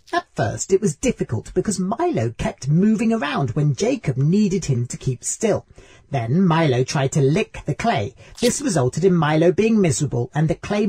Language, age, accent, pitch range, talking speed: English, 40-59, British, 130-205 Hz, 180 wpm